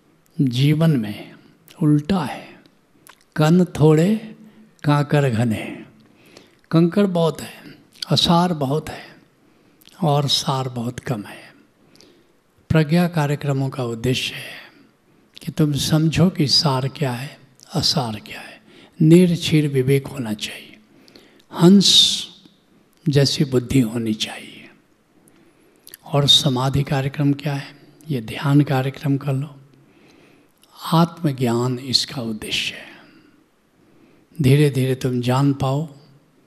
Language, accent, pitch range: Hindi, native, 125-155 Hz